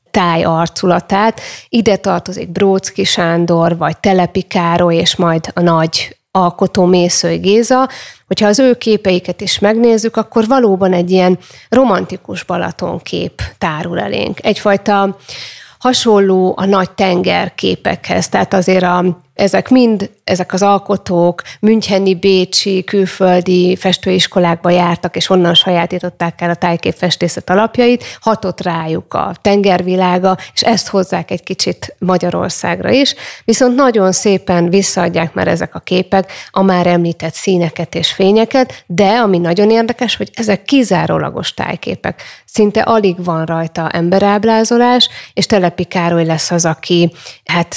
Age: 30-49